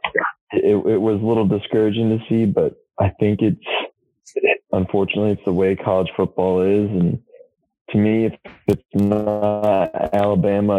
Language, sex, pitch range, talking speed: English, male, 95-105 Hz, 145 wpm